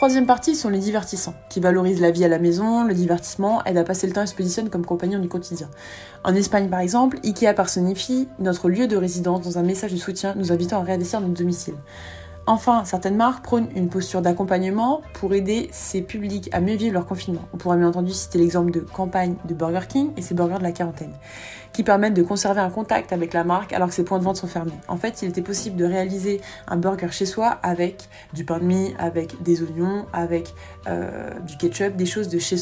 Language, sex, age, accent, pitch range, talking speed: French, female, 20-39, French, 175-205 Hz, 230 wpm